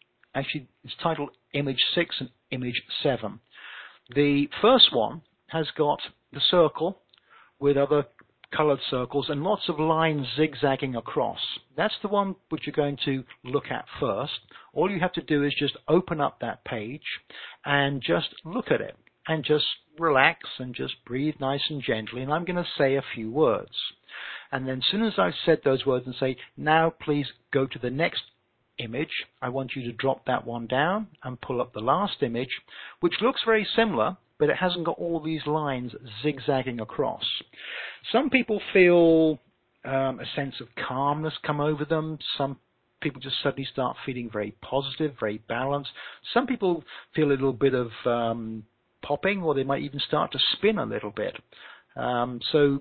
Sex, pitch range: male, 125-155 Hz